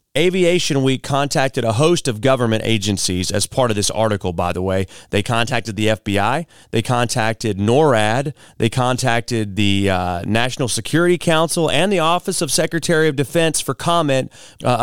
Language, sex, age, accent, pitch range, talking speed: English, male, 30-49, American, 110-145 Hz, 160 wpm